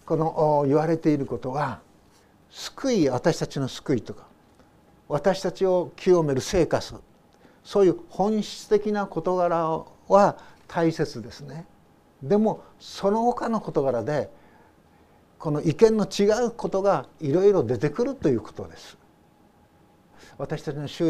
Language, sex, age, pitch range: Japanese, male, 60-79, 135-175 Hz